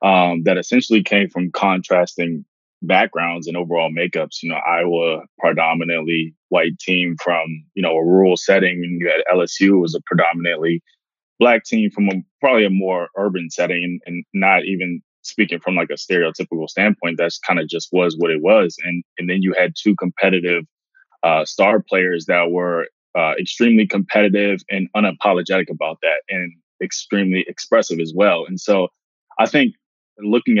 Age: 20-39